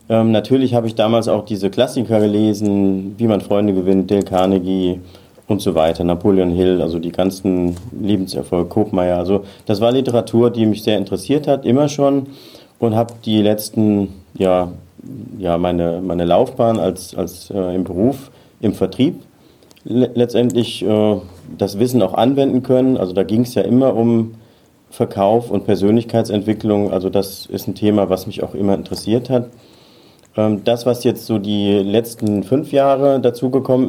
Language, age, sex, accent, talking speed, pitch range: German, 40-59, male, German, 160 wpm, 95-115 Hz